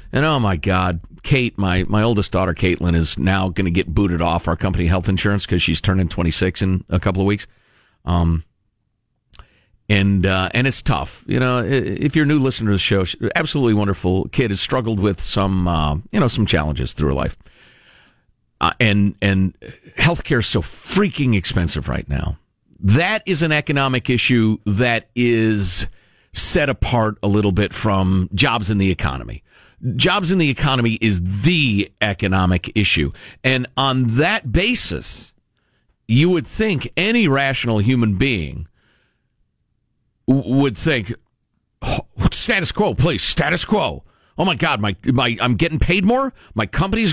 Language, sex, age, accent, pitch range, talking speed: English, male, 50-69, American, 95-160 Hz, 160 wpm